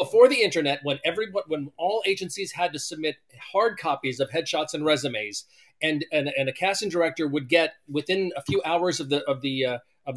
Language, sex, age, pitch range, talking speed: English, male, 40-59, 135-175 Hz, 205 wpm